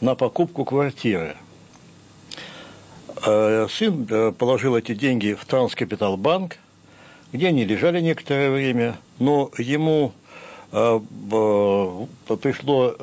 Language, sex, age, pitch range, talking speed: Russian, male, 60-79, 110-160 Hz, 80 wpm